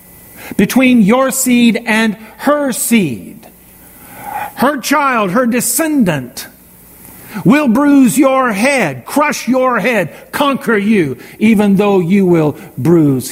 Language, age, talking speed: English, 50-69, 110 wpm